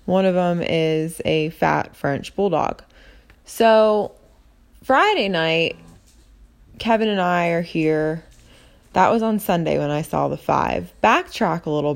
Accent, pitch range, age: American, 155-200 Hz, 20-39